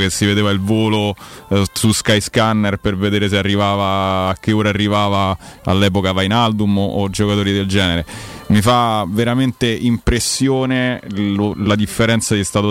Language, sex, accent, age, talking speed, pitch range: Italian, male, native, 30-49, 150 wpm, 95-105 Hz